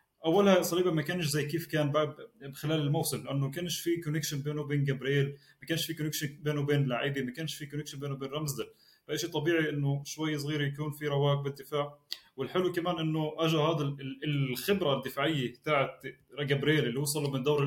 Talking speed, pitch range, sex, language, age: 175 wpm, 140-165 Hz, male, Arabic, 20-39